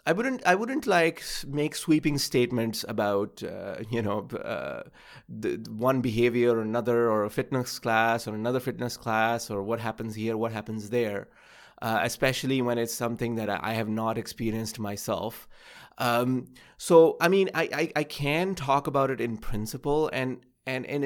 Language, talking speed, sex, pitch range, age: English, 170 wpm, male, 115-155 Hz, 30-49